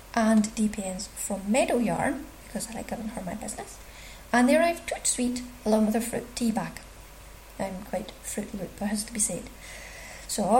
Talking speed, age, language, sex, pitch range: 185 wpm, 30-49, English, female, 205-240 Hz